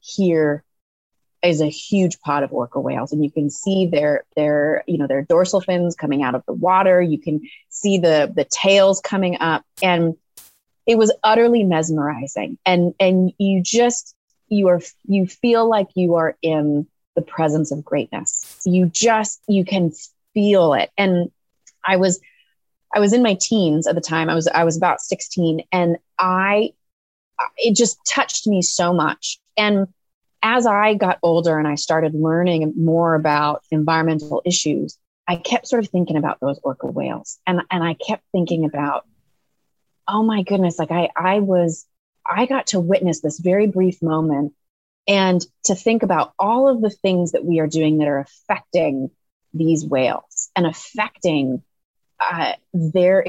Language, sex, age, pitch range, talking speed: English, female, 30-49, 160-200 Hz, 165 wpm